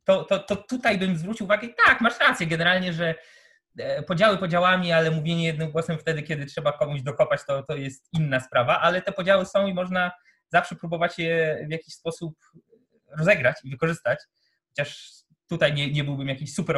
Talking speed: 180 wpm